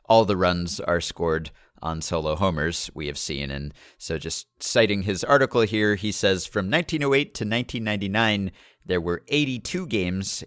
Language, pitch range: English, 85-110 Hz